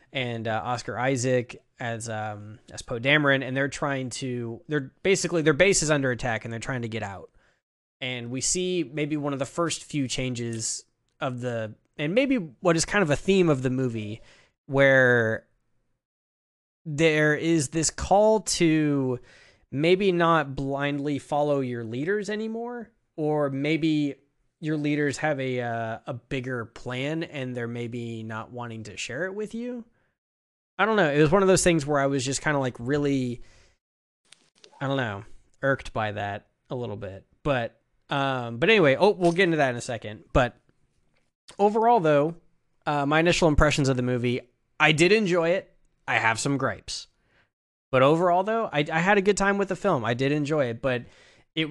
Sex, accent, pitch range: male, American, 120-160 Hz